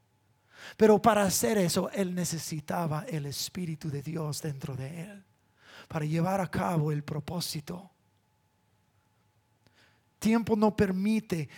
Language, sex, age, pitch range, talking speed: English, male, 30-49, 170-230 Hz, 115 wpm